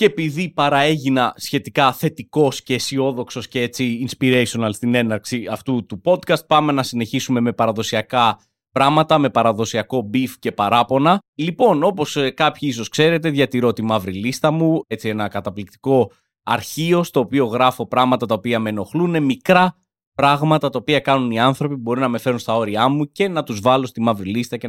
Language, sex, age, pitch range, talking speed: Greek, male, 20-39, 120-185 Hz, 165 wpm